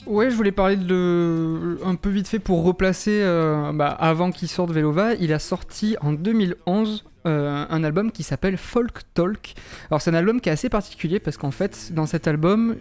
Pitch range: 150-185 Hz